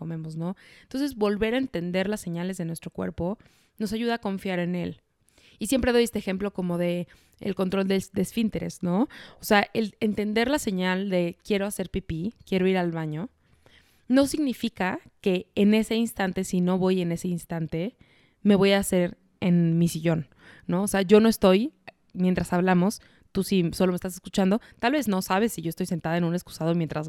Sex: female